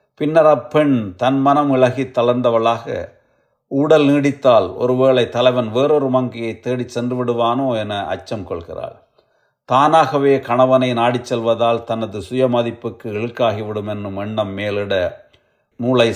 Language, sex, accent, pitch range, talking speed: Tamil, male, native, 110-130 Hz, 110 wpm